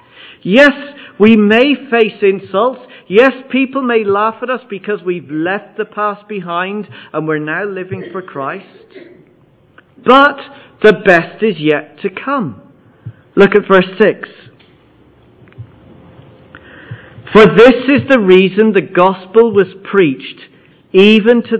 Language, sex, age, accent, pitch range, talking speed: English, male, 50-69, British, 165-225 Hz, 125 wpm